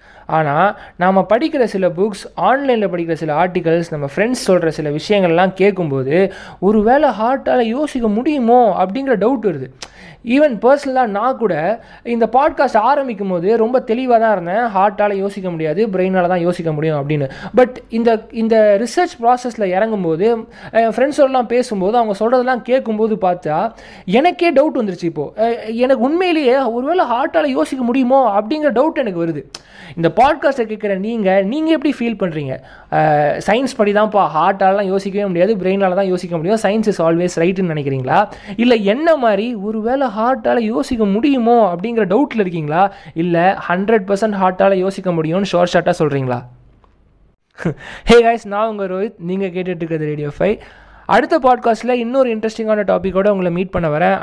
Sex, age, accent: male, 20-39, native